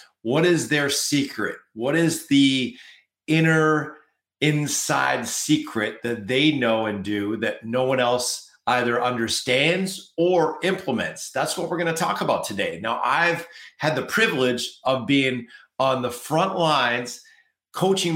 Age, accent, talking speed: 50-69, American, 140 wpm